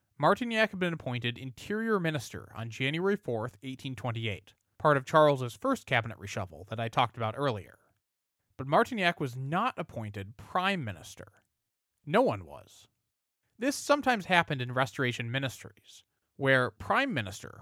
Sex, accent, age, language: male, American, 20-39, English